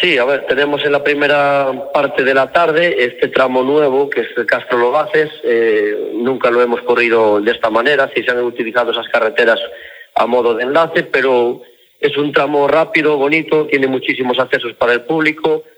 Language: Spanish